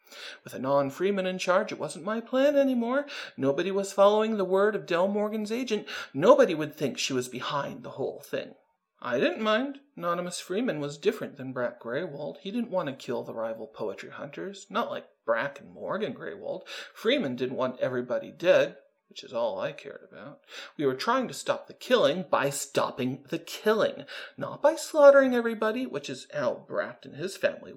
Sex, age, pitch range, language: male, 40-59, 150-235 Hz, English